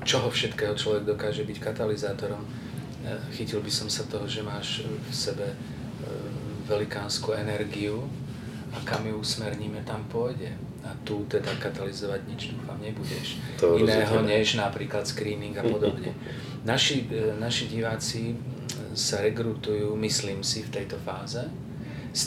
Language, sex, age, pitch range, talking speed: Slovak, male, 40-59, 105-130 Hz, 125 wpm